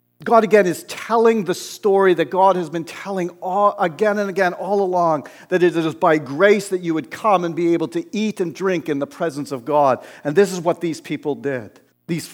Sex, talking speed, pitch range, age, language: male, 225 wpm, 145-185 Hz, 50-69, English